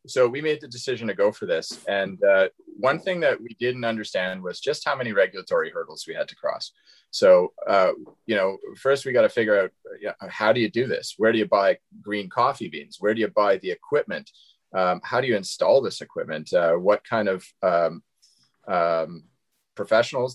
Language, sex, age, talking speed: English, male, 30-49, 210 wpm